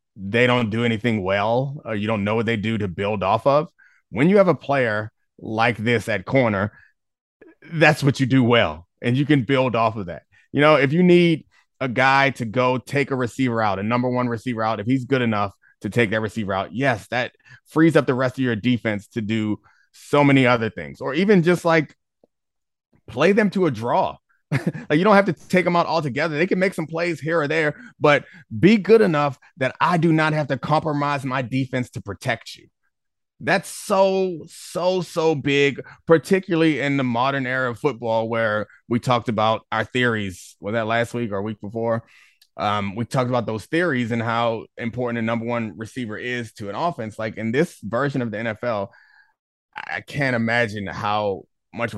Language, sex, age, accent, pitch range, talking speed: English, male, 30-49, American, 110-145 Hz, 200 wpm